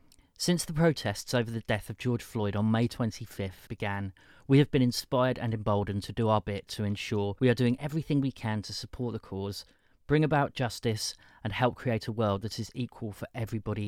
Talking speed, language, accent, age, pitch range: 210 wpm, English, British, 30-49, 105-145 Hz